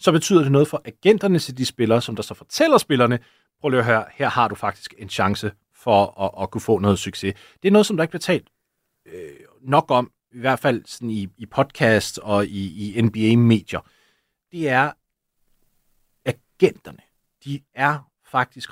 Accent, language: native, Danish